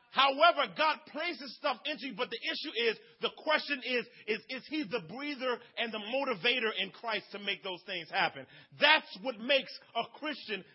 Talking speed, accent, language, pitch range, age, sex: 185 wpm, American, English, 215-285 Hz, 40-59, male